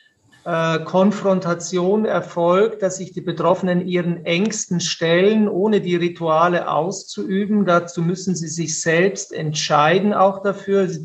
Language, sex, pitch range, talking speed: German, male, 165-190 Hz, 120 wpm